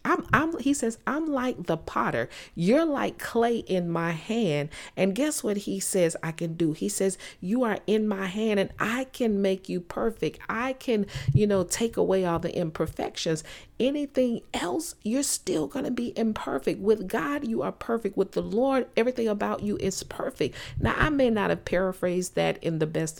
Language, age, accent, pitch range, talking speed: English, 40-59, American, 160-215 Hz, 195 wpm